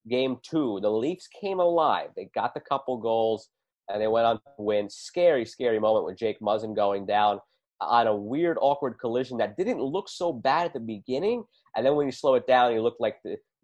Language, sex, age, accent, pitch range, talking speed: English, male, 30-49, American, 110-165 Hz, 215 wpm